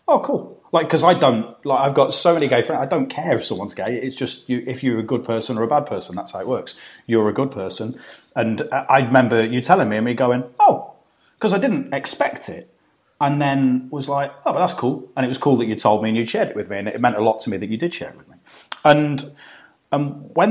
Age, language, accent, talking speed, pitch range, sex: 30-49, English, British, 270 wpm, 115-140 Hz, male